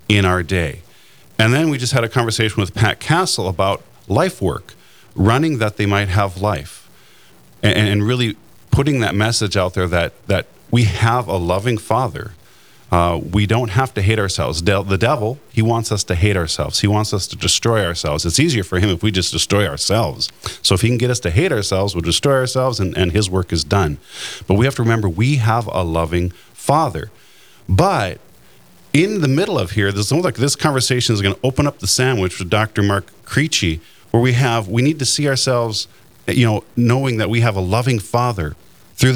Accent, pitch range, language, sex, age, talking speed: American, 95-125 Hz, English, male, 40-59, 205 wpm